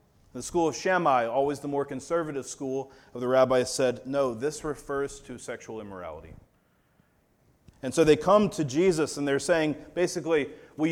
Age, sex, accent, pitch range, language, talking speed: 30-49, male, American, 135-160 Hz, English, 165 wpm